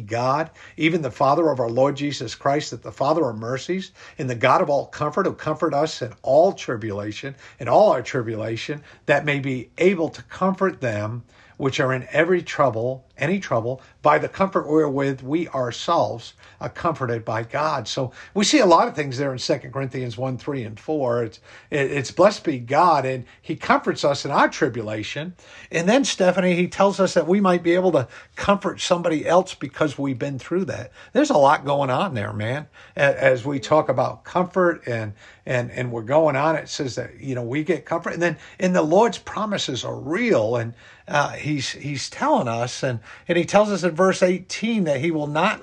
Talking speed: 205 wpm